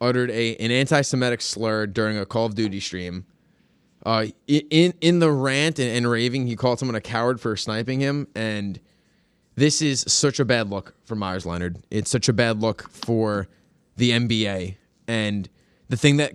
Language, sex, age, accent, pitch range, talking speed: English, male, 20-39, American, 105-130 Hz, 180 wpm